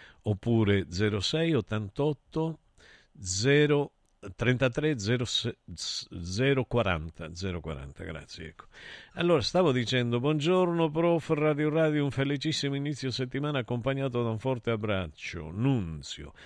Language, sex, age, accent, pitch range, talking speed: Italian, male, 50-69, native, 100-140 Hz, 105 wpm